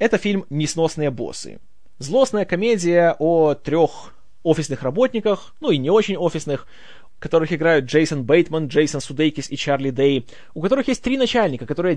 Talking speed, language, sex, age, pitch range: 150 wpm, Russian, male, 20-39, 140-190 Hz